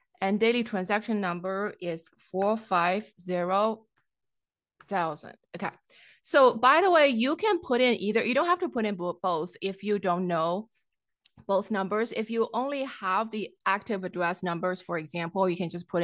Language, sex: English, female